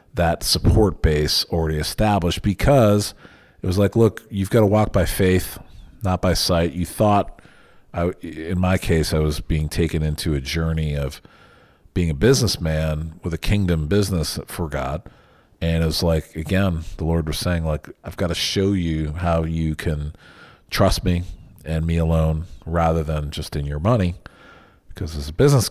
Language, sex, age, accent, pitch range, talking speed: English, male, 40-59, American, 80-100 Hz, 175 wpm